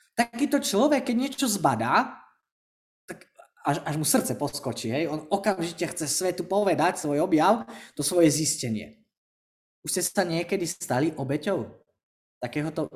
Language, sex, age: Slovak, male, 20-39